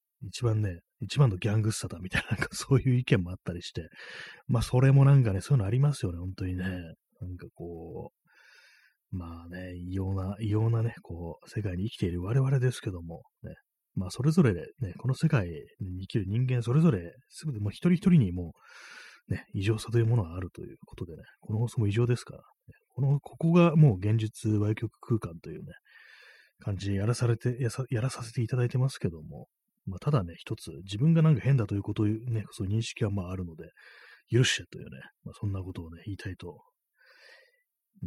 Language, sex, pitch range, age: Japanese, male, 95-125 Hz, 30-49